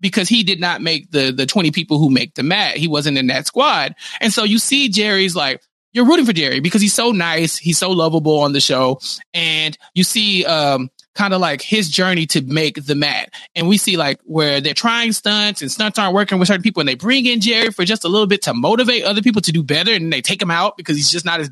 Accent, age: American, 20-39